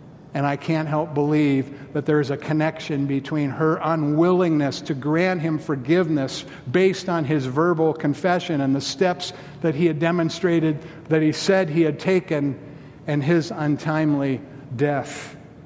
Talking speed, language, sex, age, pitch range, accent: 150 wpm, English, male, 50-69, 150-220 Hz, American